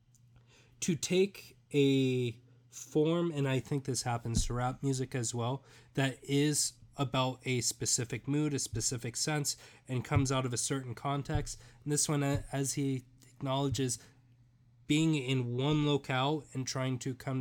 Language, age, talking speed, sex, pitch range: English, 20-39, 150 wpm, male, 120-140 Hz